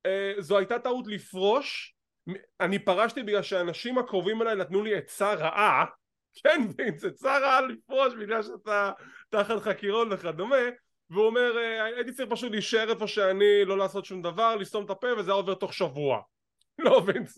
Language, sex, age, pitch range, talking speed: English, male, 20-39, 190-245 Hz, 140 wpm